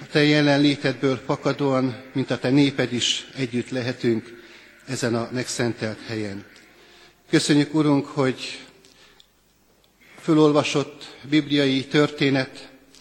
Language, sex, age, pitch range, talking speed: Hungarian, male, 50-69, 125-140 Hz, 95 wpm